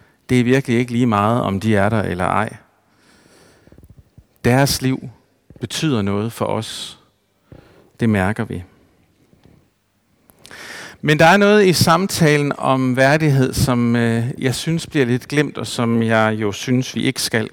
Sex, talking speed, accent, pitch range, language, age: male, 145 wpm, native, 115-150 Hz, Danish, 60-79